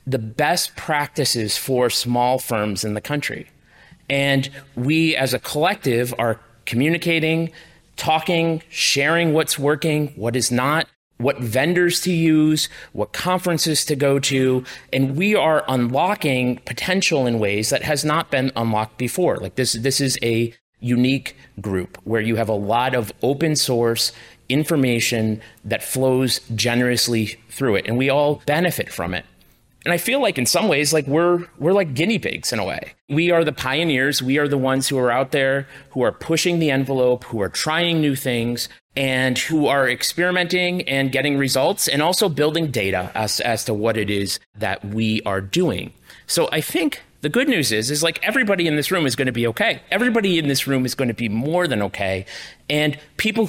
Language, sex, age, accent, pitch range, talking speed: English, male, 30-49, American, 120-160 Hz, 180 wpm